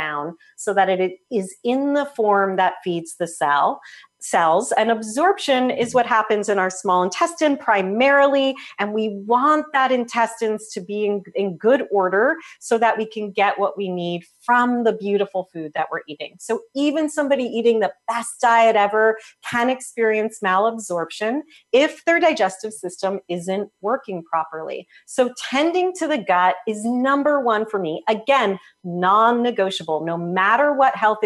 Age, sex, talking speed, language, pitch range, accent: 40-59, female, 155 wpm, English, 195-255 Hz, American